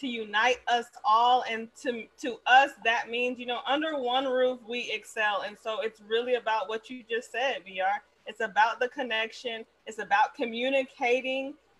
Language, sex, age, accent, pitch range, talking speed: English, female, 20-39, American, 220-260 Hz, 175 wpm